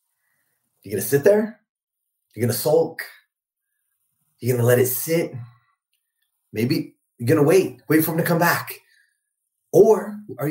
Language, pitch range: English, 120-175 Hz